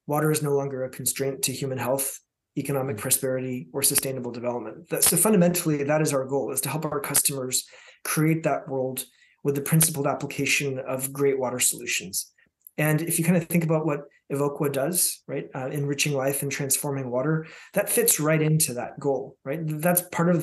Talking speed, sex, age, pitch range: 185 wpm, male, 20-39, 135-160 Hz